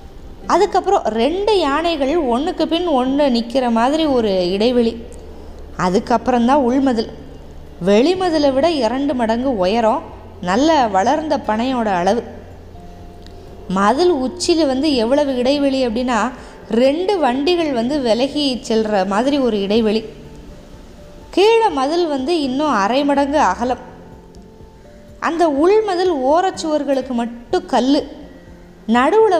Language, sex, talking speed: Tamil, female, 100 wpm